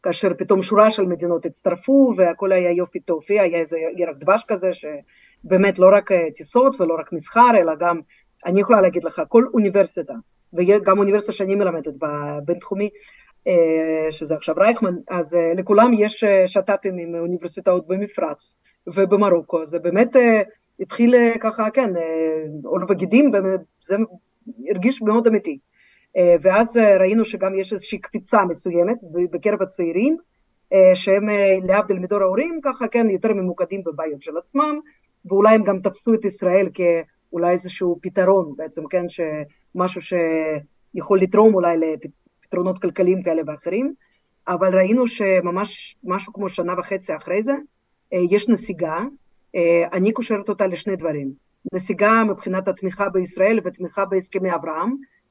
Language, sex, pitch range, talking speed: Hebrew, female, 175-210 Hz, 130 wpm